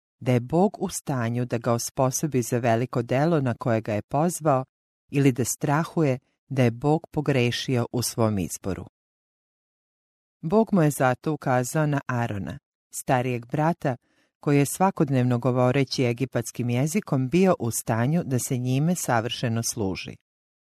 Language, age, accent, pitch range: English, 40-59, Croatian, 120-155 Hz